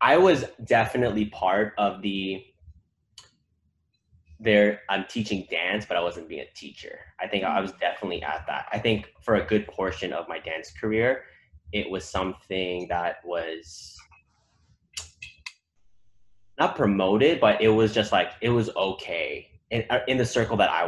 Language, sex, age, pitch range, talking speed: English, male, 10-29, 90-105 Hz, 155 wpm